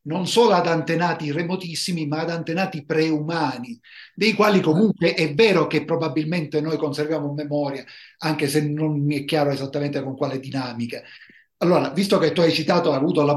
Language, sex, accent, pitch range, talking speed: Italian, male, native, 140-175 Hz, 165 wpm